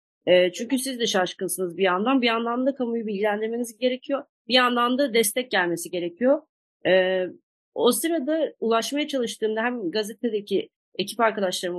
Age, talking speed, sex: 30-49, 130 wpm, female